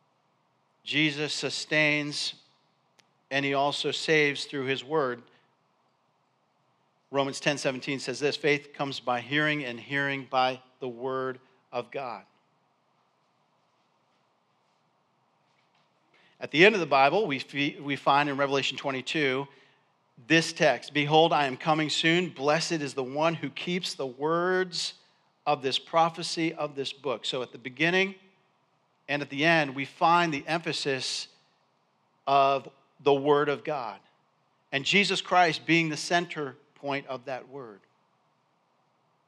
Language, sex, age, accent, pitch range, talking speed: English, male, 50-69, American, 140-165 Hz, 130 wpm